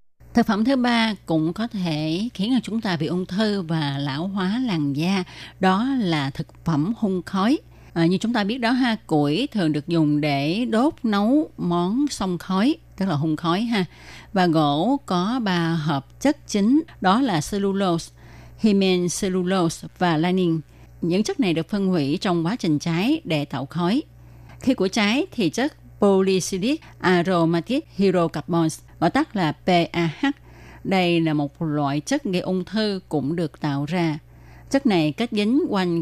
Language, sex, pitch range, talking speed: Vietnamese, female, 160-215 Hz, 170 wpm